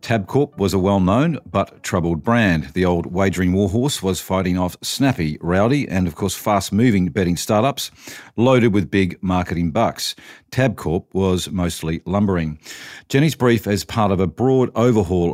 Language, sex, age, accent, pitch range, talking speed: English, male, 50-69, Australian, 90-110 Hz, 155 wpm